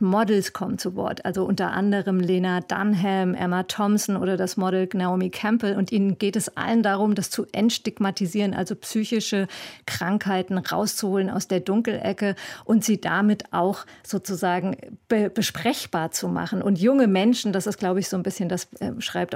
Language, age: German, 50-69